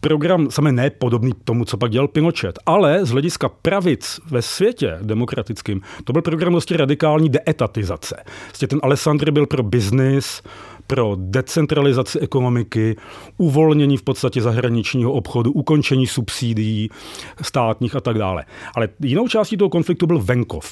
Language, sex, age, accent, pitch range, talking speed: Czech, male, 40-59, native, 115-150 Hz, 140 wpm